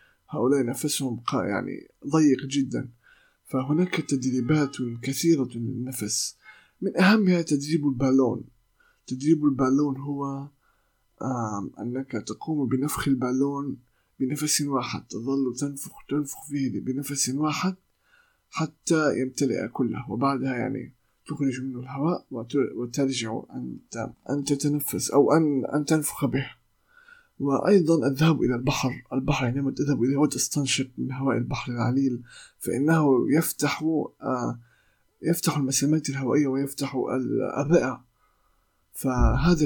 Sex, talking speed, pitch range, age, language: male, 100 wpm, 130-150 Hz, 20-39, Arabic